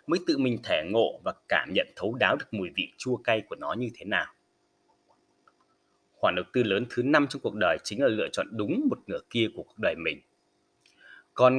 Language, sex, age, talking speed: Vietnamese, male, 20-39, 215 wpm